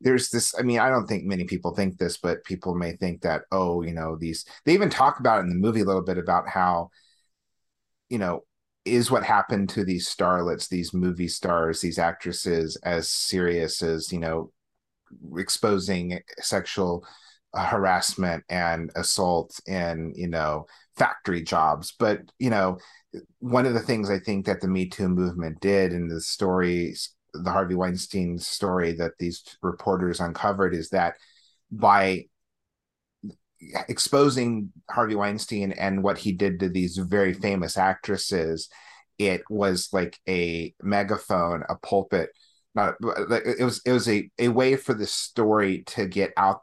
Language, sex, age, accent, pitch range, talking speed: English, male, 30-49, American, 85-105 Hz, 155 wpm